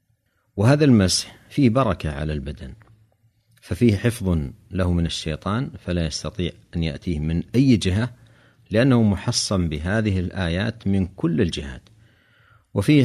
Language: Arabic